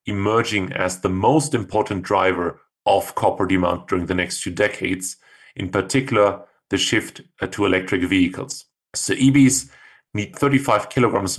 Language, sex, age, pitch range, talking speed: English, male, 30-49, 95-115 Hz, 135 wpm